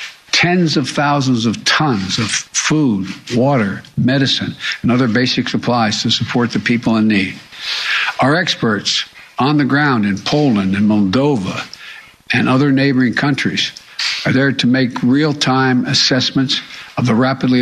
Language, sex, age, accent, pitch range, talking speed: English, male, 60-79, American, 120-140 Hz, 140 wpm